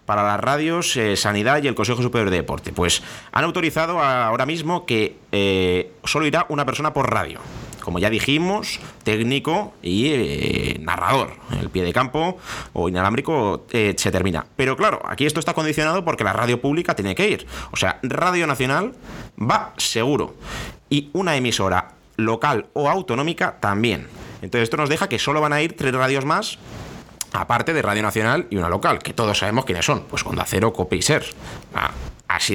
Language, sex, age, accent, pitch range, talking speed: Spanish, male, 30-49, Spanish, 100-150 Hz, 175 wpm